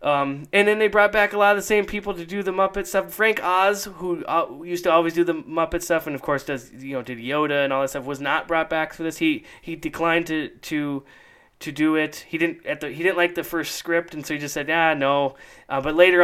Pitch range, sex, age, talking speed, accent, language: 130-170 Hz, male, 20-39, 275 wpm, American, English